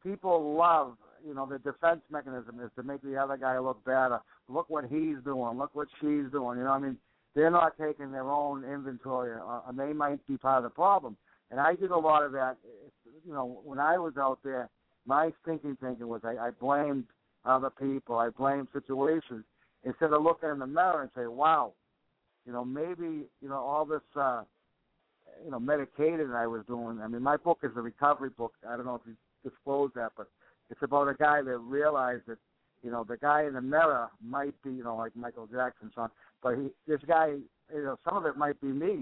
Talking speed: 220 wpm